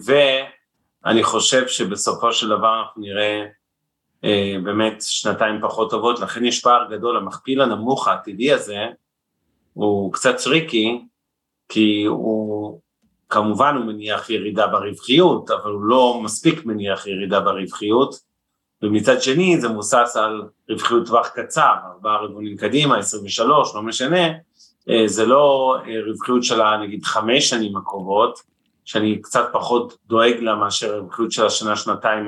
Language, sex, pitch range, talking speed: Hebrew, male, 105-125 Hz, 130 wpm